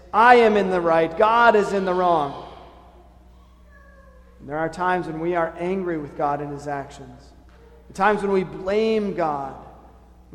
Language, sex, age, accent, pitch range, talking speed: English, male, 40-59, American, 140-195 Hz, 175 wpm